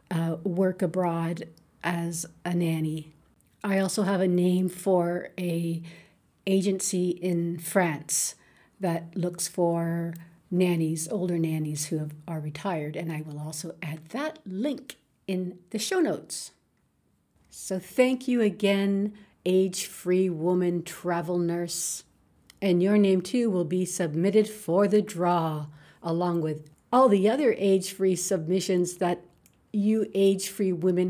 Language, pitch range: English, 170-195 Hz